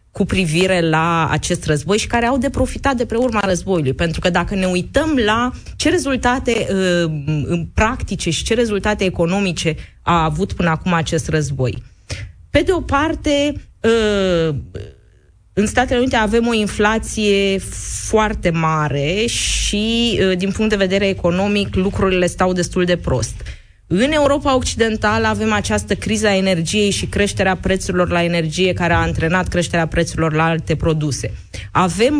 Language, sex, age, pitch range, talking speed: Romanian, female, 20-39, 160-215 Hz, 145 wpm